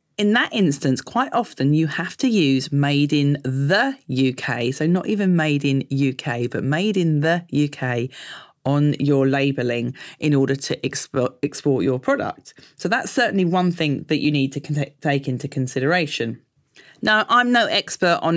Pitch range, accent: 130-175 Hz, British